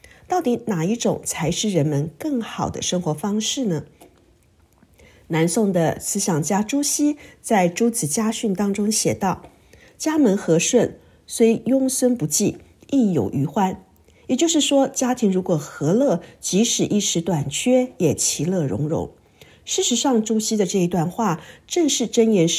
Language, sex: Chinese, female